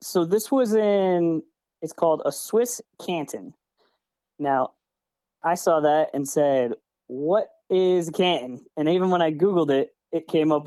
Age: 20-39